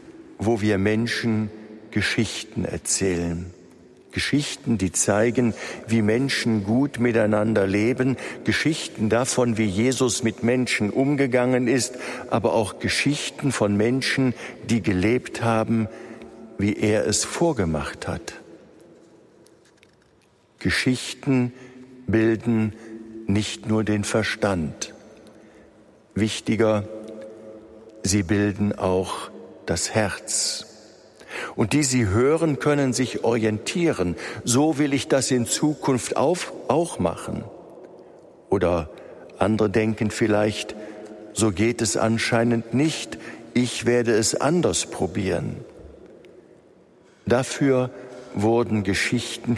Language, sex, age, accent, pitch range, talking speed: German, male, 50-69, German, 105-125 Hz, 95 wpm